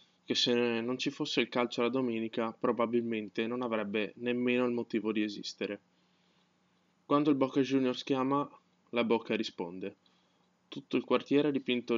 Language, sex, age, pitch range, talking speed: Italian, male, 20-39, 110-130 Hz, 155 wpm